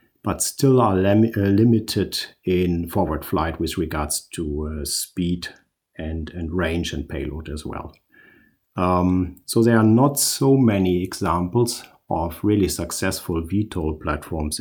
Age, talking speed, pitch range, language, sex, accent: 50-69, 130 wpm, 90-115 Hz, English, male, German